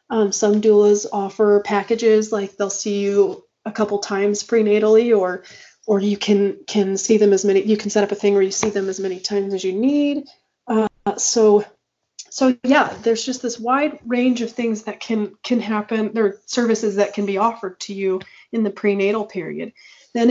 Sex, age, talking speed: female, 30-49, 200 wpm